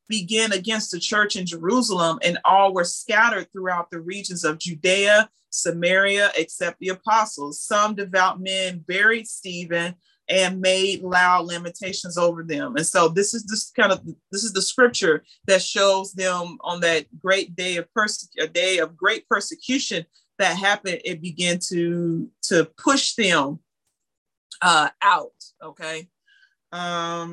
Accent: American